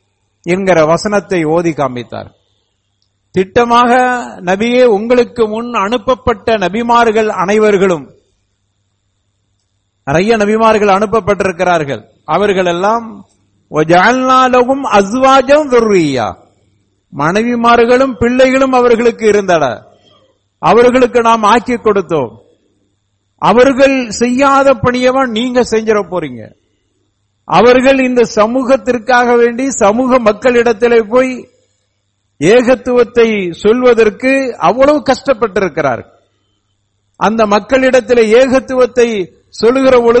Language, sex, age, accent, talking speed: English, male, 50-69, Indian, 85 wpm